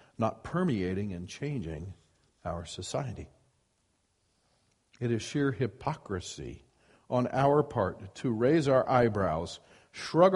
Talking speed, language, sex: 105 wpm, English, male